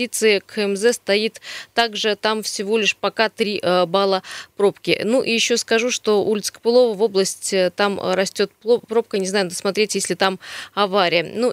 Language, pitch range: Russian, 185-230 Hz